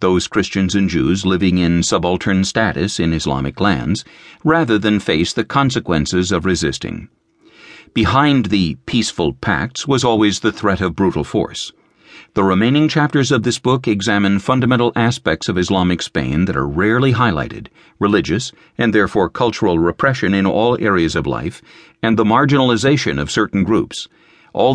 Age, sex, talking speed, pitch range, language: 50-69, male, 150 wpm, 90-120 Hz, English